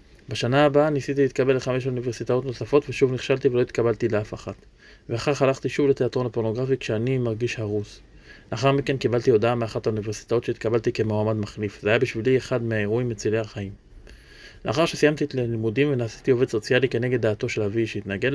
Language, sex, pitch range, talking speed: English, male, 110-135 Hz, 160 wpm